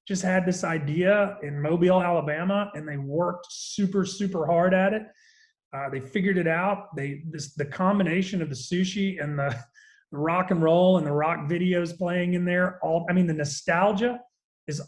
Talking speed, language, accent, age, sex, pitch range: 185 wpm, English, American, 30-49, male, 150-190 Hz